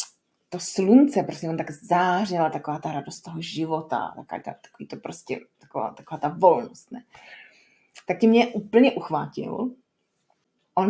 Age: 30-49